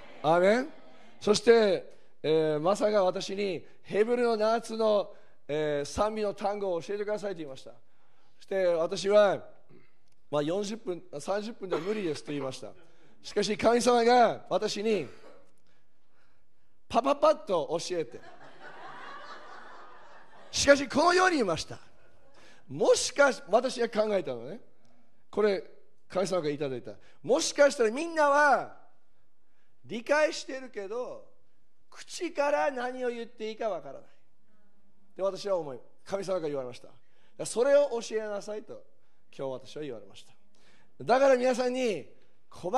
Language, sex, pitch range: Japanese, male, 190-265 Hz